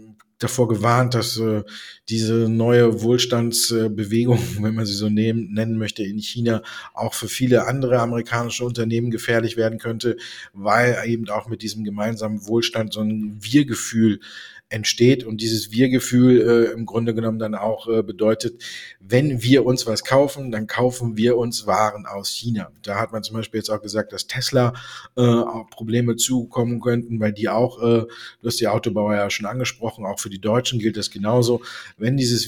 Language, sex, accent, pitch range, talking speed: German, male, German, 110-120 Hz, 165 wpm